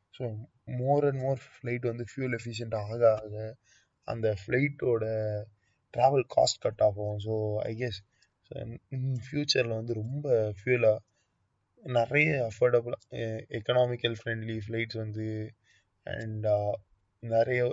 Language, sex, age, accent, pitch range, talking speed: Tamil, male, 20-39, native, 110-125 Hz, 105 wpm